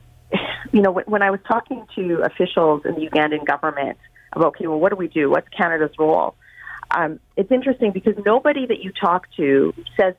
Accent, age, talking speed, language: American, 30-49, 190 wpm, English